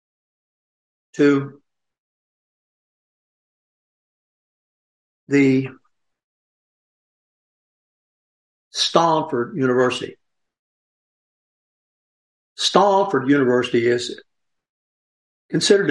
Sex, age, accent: male, 60-79, American